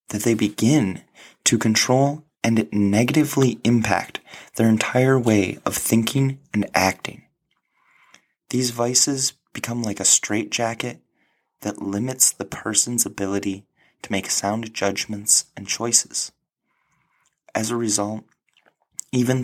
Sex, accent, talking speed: male, American, 110 wpm